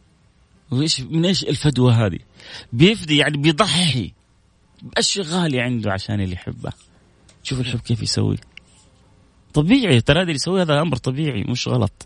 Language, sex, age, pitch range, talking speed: Arabic, male, 30-49, 100-135 Hz, 140 wpm